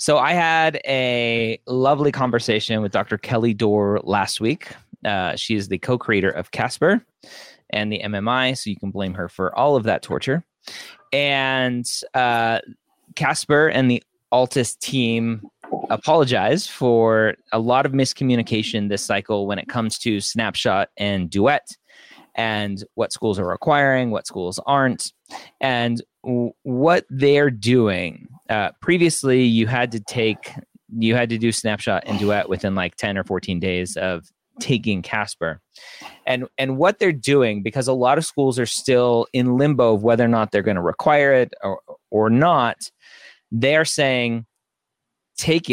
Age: 20-39